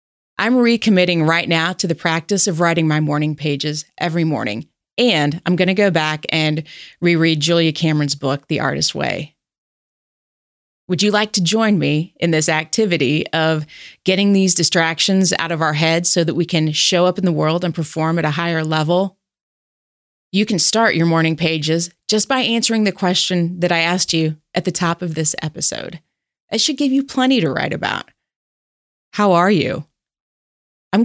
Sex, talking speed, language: female, 180 wpm, English